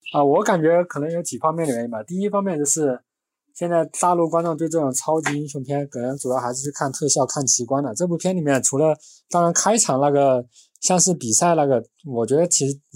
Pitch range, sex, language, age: 125-160 Hz, male, Chinese, 20-39